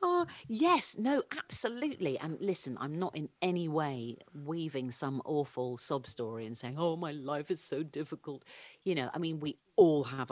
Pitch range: 120-155 Hz